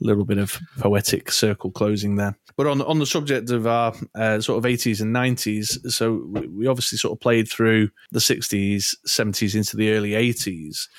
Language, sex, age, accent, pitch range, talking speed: English, male, 30-49, British, 105-130 Hz, 185 wpm